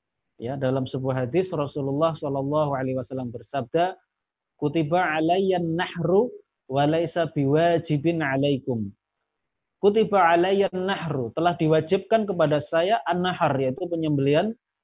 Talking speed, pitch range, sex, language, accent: 95 wpm, 135-175 Hz, male, Indonesian, native